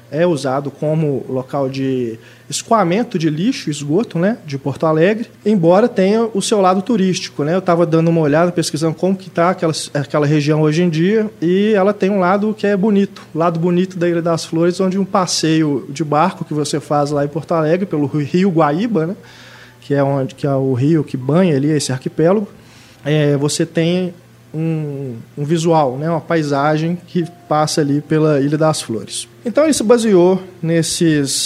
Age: 20-39